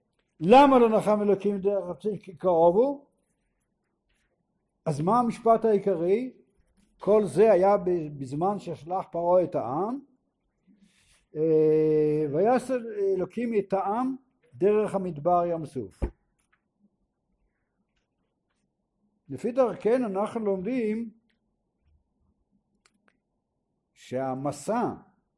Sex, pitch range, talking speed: male, 165-215 Hz, 75 wpm